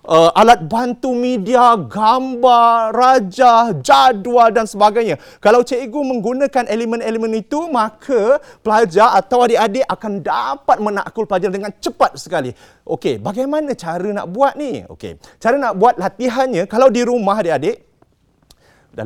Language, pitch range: Malay, 190-265 Hz